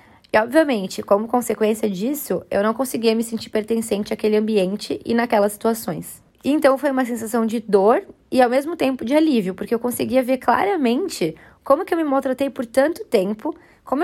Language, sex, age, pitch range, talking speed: Portuguese, female, 20-39, 205-250 Hz, 180 wpm